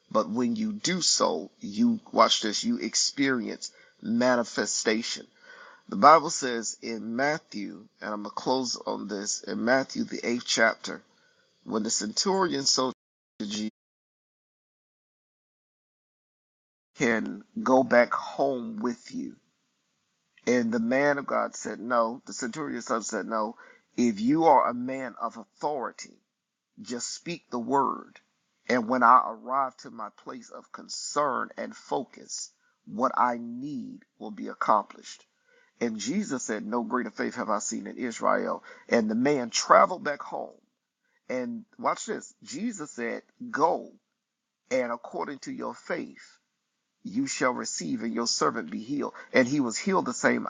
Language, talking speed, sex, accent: English, 145 wpm, male, American